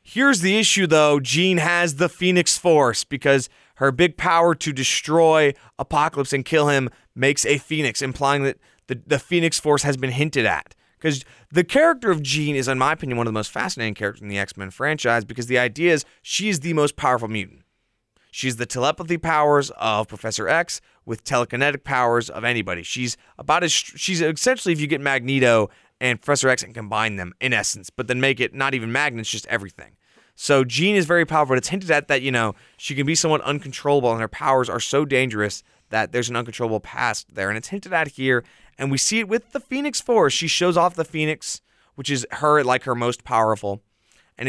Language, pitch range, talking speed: English, 115-155 Hz, 210 wpm